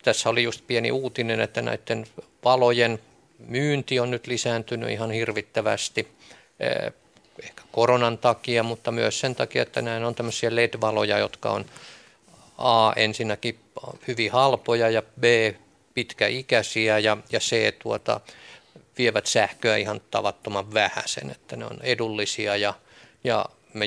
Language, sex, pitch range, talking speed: Finnish, male, 110-130 Hz, 125 wpm